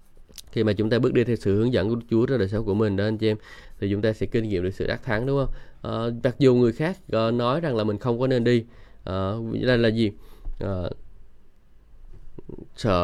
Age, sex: 20-39, male